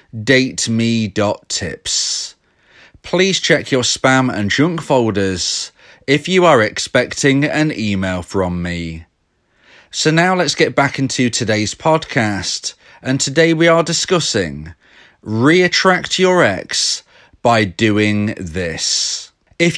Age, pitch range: 30-49, 110-155 Hz